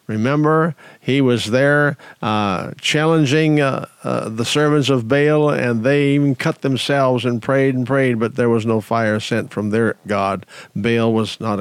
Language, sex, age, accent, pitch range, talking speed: English, male, 50-69, American, 115-145 Hz, 170 wpm